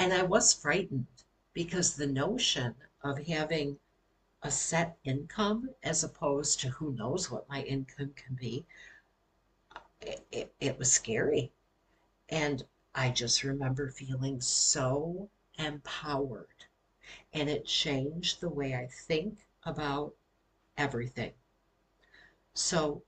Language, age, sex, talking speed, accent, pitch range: English, 60-79, female, 110 wpm, American, 135-170 Hz